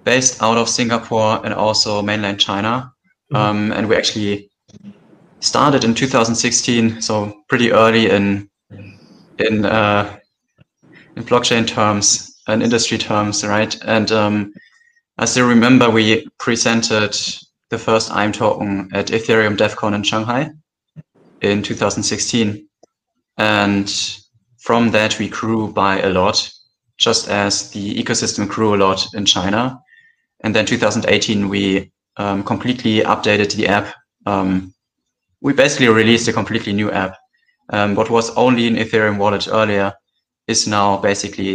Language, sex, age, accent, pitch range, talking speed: English, male, 20-39, German, 100-115 Hz, 130 wpm